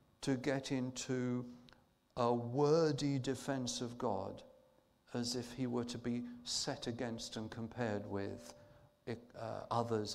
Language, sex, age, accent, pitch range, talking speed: English, male, 50-69, British, 110-145 Hz, 125 wpm